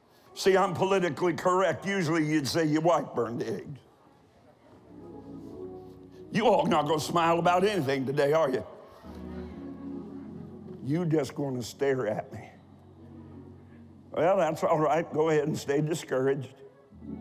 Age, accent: 60-79, American